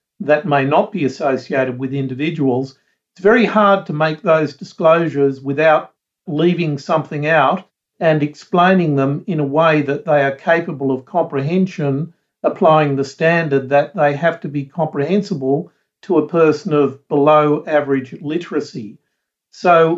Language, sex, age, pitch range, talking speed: English, male, 50-69, 140-170 Hz, 140 wpm